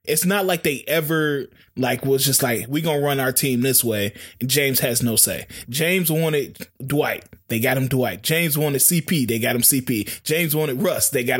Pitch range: 120-165 Hz